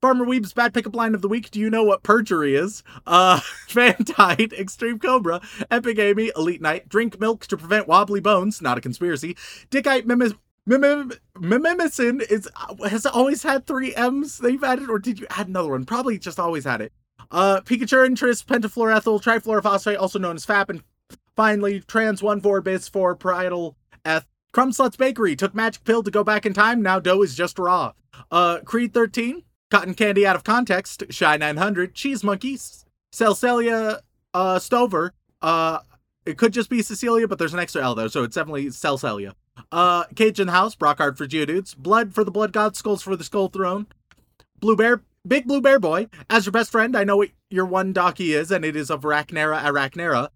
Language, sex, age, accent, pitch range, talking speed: English, male, 30-49, American, 175-225 Hz, 190 wpm